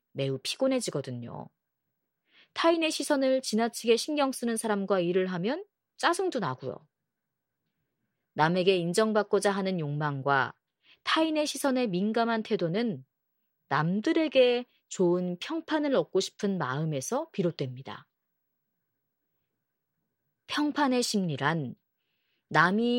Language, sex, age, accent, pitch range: Korean, female, 30-49, native, 165-260 Hz